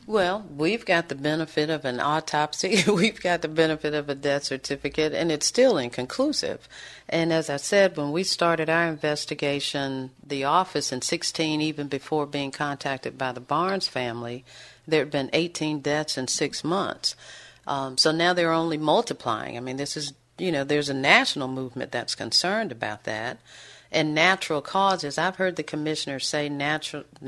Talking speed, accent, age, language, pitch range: 170 wpm, American, 50-69, English, 135-160 Hz